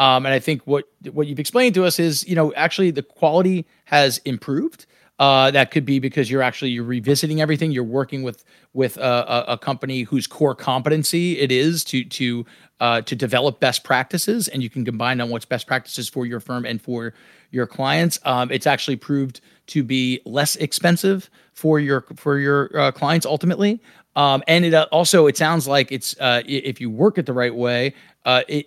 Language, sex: English, male